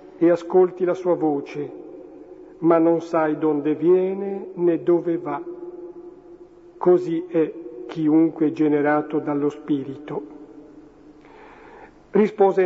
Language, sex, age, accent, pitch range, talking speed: Italian, male, 50-69, native, 160-220 Hz, 95 wpm